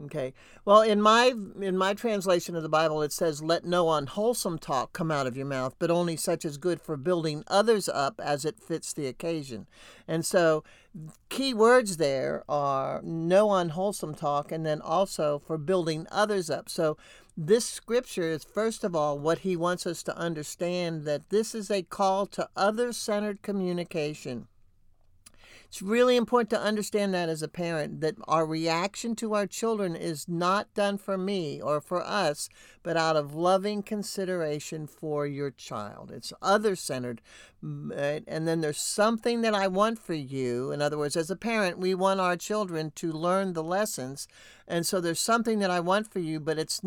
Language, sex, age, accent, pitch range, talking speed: English, male, 60-79, American, 155-200 Hz, 180 wpm